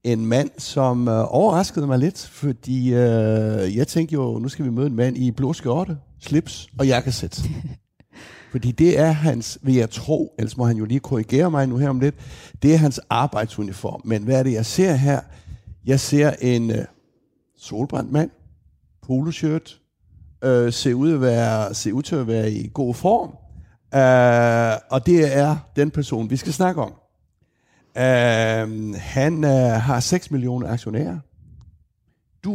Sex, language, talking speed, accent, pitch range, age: male, Danish, 165 wpm, native, 115-145 Hz, 60-79